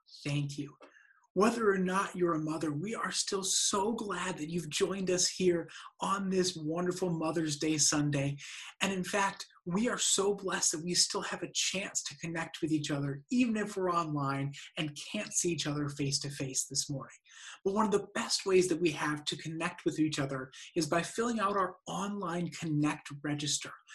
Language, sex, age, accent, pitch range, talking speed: English, male, 30-49, American, 155-200 Hz, 195 wpm